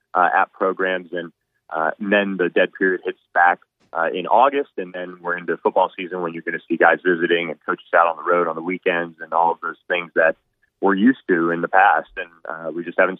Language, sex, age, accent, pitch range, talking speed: English, male, 30-49, American, 85-100 Hz, 245 wpm